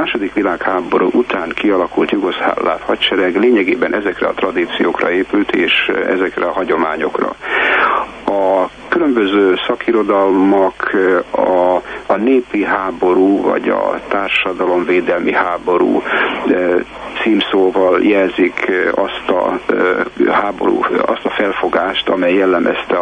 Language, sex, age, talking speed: Hungarian, male, 60-79, 90 wpm